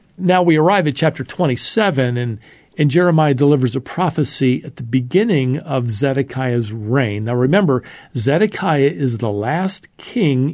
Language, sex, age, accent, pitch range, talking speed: English, male, 50-69, American, 125-150 Hz, 140 wpm